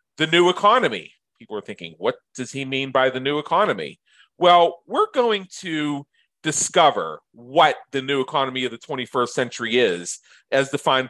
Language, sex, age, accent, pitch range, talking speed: English, male, 40-59, American, 130-180 Hz, 160 wpm